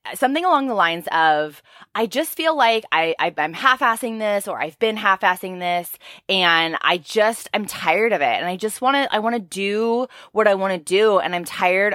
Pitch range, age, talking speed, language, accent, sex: 165-230 Hz, 20-39, 215 wpm, English, American, female